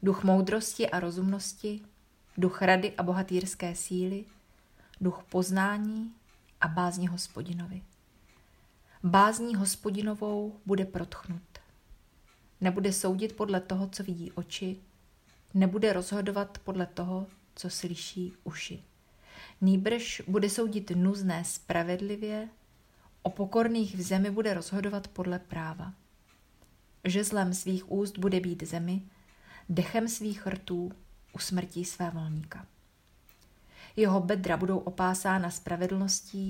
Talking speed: 105 wpm